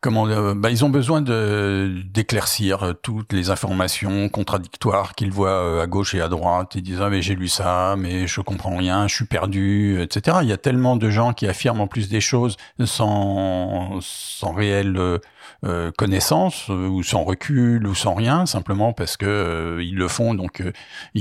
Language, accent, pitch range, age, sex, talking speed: French, French, 95-120 Hz, 50-69, male, 190 wpm